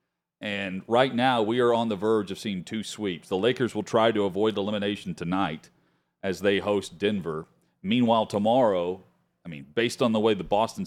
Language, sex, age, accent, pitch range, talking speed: English, male, 40-59, American, 100-135 Hz, 195 wpm